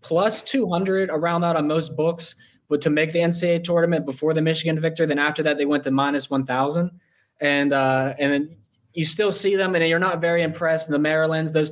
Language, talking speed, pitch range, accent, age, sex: English, 215 wpm, 145-165 Hz, American, 20-39, male